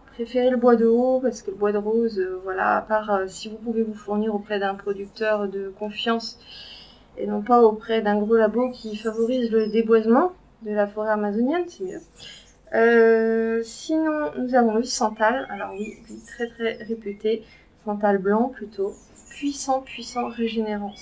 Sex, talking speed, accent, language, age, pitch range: female, 170 wpm, French, French, 30-49, 215-255 Hz